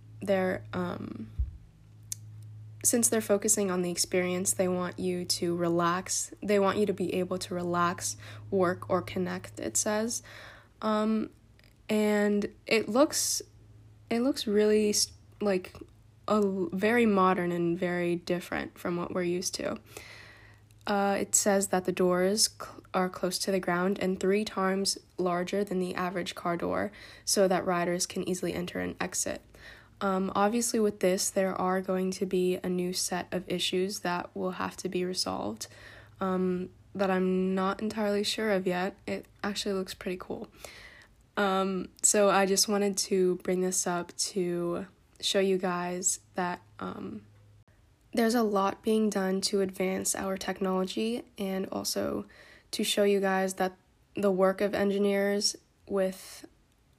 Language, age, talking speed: English, 10-29, 150 wpm